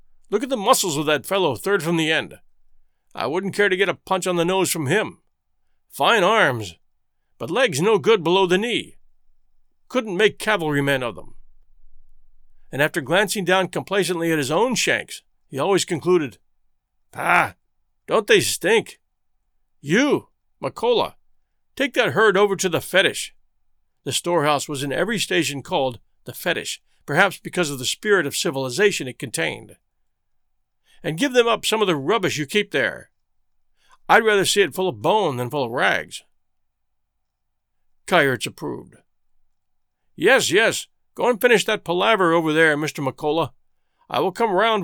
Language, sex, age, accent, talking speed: English, male, 50-69, American, 160 wpm